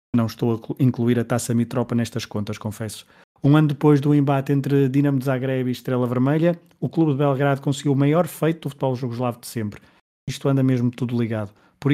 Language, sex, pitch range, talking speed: Portuguese, male, 120-140 Hz, 205 wpm